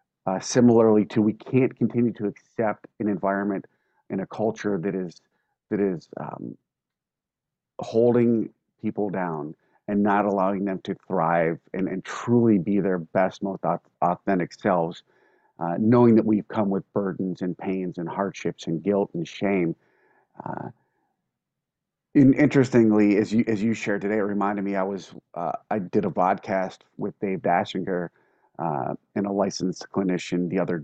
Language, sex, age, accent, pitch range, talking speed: English, male, 40-59, American, 95-110 Hz, 160 wpm